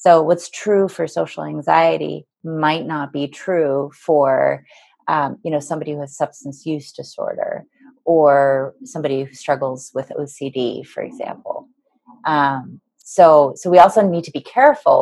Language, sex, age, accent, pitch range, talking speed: English, female, 30-49, American, 150-195 Hz, 140 wpm